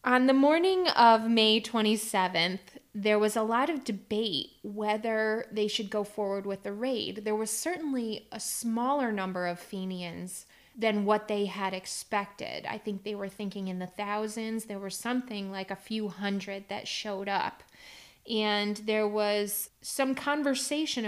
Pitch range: 205-245 Hz